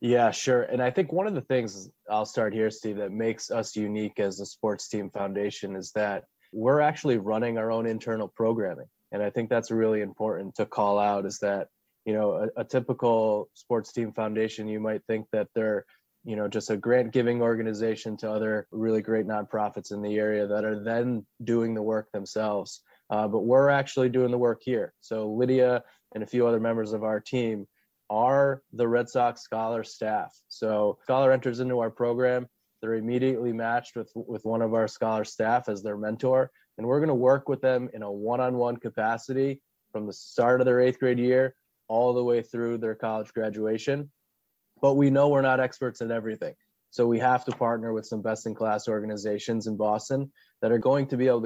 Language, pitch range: English, 110-125 Hz